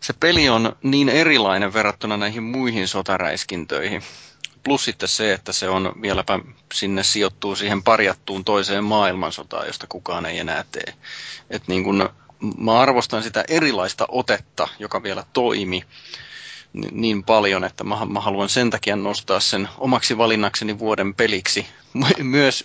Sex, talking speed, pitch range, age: male, 130 wpm, 95-115 Hz, 30-49